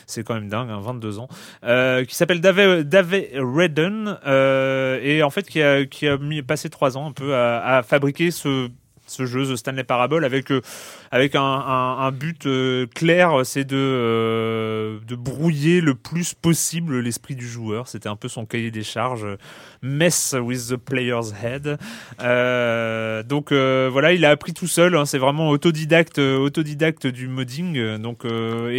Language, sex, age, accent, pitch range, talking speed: French, male, 30-49, French, 125-155 Hz, 180 wpm